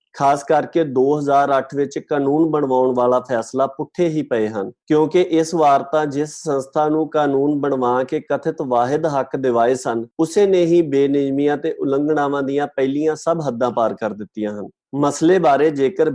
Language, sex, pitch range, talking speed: Punjabi, male, 125-155 Hz, 160 wpm